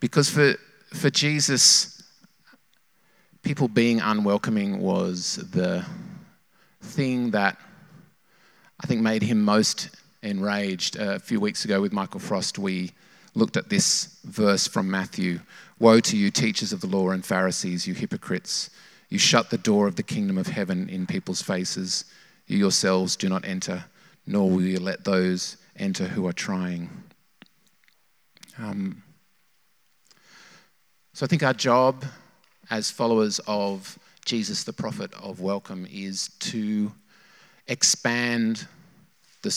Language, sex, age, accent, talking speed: English, male, 30-49, Australian, 130 wpm